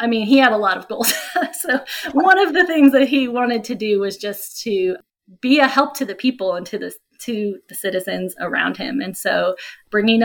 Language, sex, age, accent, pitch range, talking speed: English, female, 20-39, American, 190-245 Hz, 215 wpm